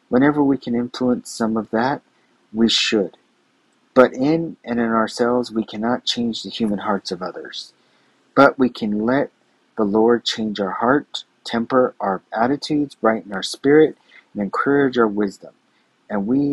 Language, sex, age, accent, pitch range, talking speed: English, male, 40-59, American, 105-125 Hz, 155 wpm